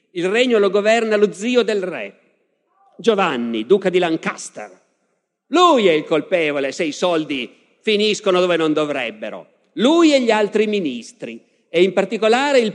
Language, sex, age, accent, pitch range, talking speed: Italian, male, 50-69, native, 165-240 Hz, 150 wpm